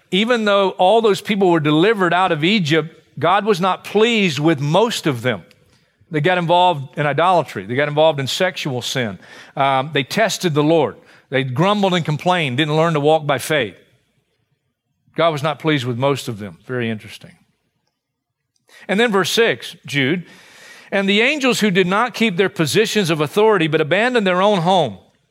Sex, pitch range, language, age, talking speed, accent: male, 155-200 Hz, English, 50-69, 180 wpm, American